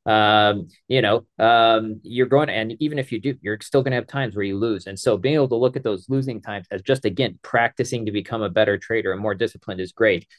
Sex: male